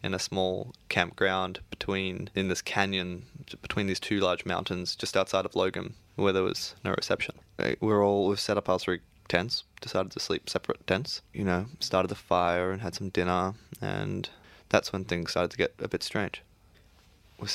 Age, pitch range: 10-29, 90-105 Hz